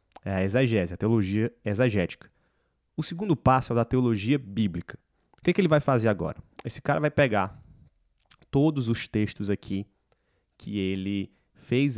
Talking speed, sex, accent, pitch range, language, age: 165 wpm, male, Brazilian, 110-135 Hz, Portuguese, 20-39